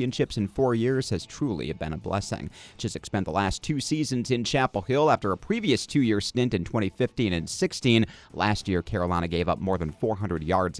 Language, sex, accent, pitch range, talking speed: English, male, American, 90-130 Hz, 195 wpm